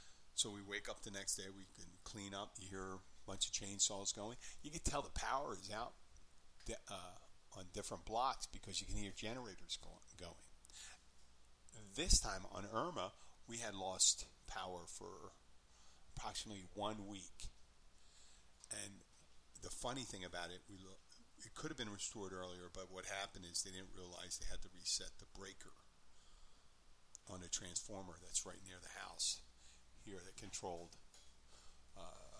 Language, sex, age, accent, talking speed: English, male, 40-59, American, 155 wpm